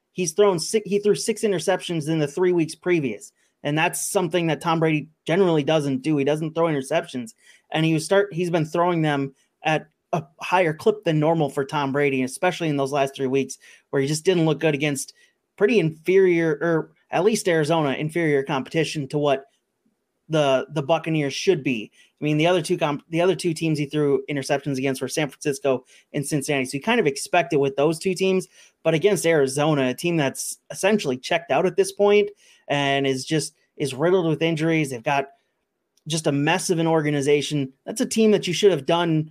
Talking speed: 205 wpm